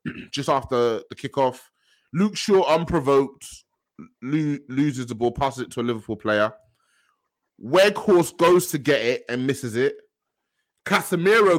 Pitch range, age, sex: 130-180 Hz, 20-39, male